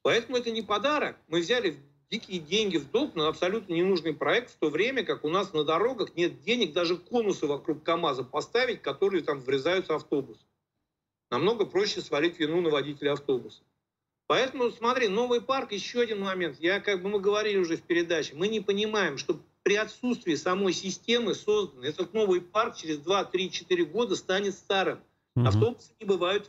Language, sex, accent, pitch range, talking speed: Russian, male, native, 165-225 Hz, 170 wpm